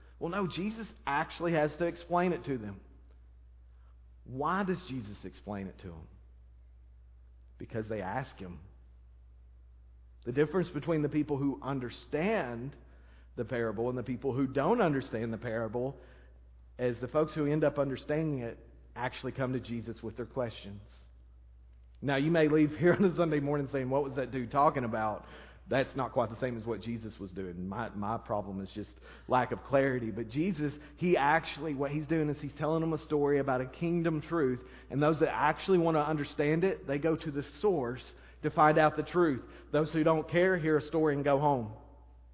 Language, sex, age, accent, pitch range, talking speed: English, male, 40-59, American, 105-155 Hz, 185 wpm